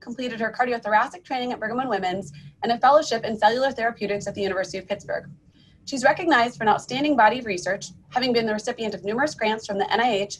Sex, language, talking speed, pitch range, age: female, English, 215 wpm, 195-245 Hz, 30-49